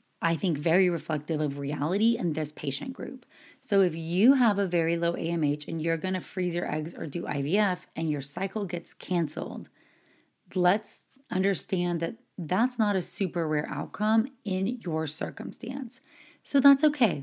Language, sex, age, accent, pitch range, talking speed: English, female, 30-49, American, 155-205 Hz, 165 wpm